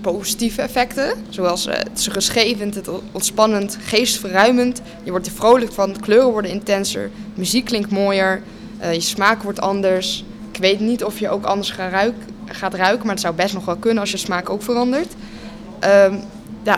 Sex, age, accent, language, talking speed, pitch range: female, 20-39, Dutch, Dutch, 180 wpm, 190-220 Hz